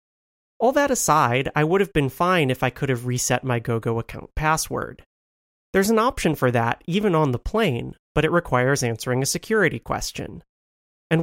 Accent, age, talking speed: American, 30-49, 180 wpm